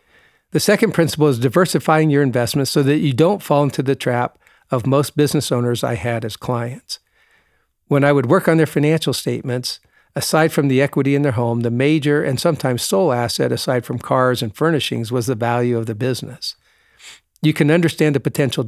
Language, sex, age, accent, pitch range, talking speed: English, male, 50-69, American, 120-150 Hz, 195 wpm